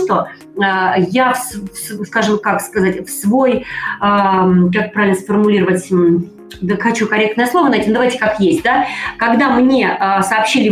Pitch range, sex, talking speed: 200-265 Hz, female, 125 wpm